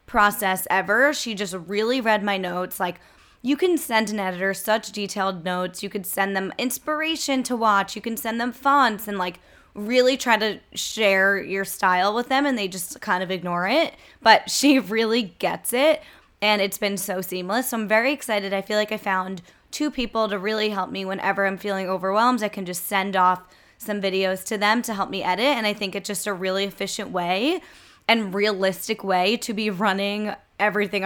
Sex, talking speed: female, 200 wpm